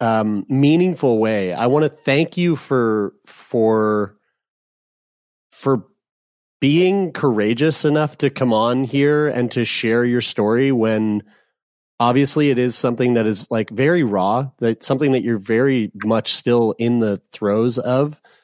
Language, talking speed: English, 145 wpm